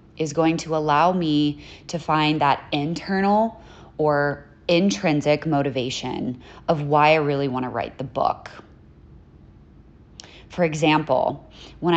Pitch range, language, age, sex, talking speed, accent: 135-165 Hz, English, 20-39, female, 120 wpm, American